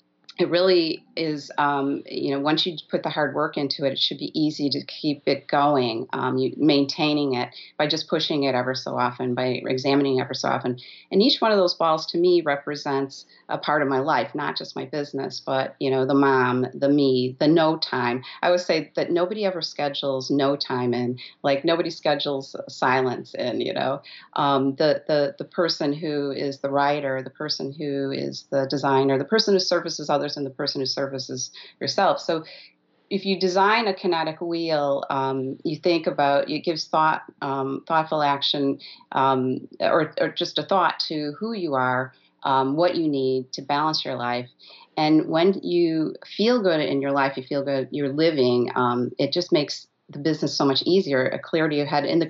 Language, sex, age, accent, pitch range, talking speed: English, female, 40-59, American, 135-160 Hz, 200 wpm